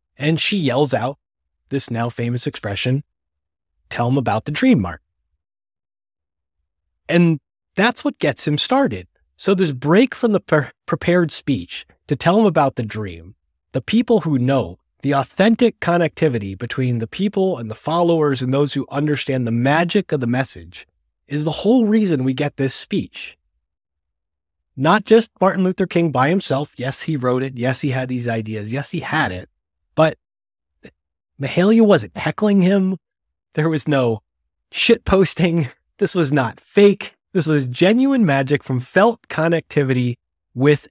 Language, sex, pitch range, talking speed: English, male, 105-160 Hz, 150 wpm